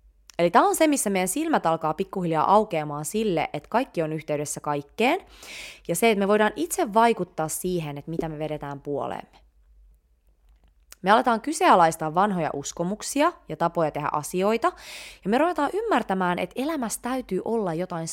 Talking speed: 155 wpm